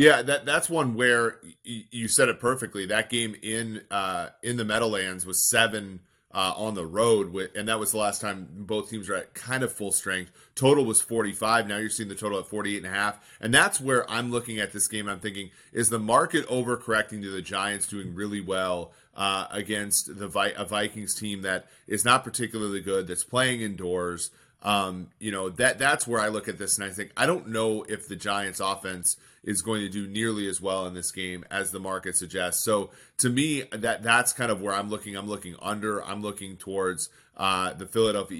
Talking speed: 220 wpm